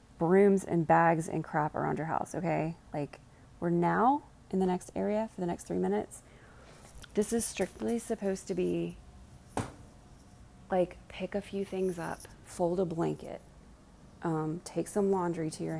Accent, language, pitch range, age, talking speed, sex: American, English, 160-195 Hz, 20-39, 160 wpm, female